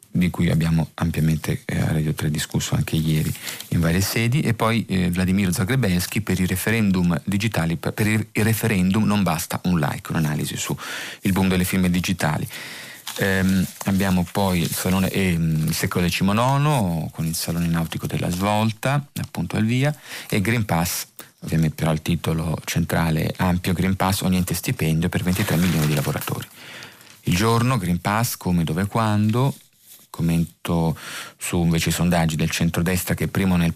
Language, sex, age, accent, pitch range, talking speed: Italian, male, 40-59, native, 85-105 Hz, 165 wpm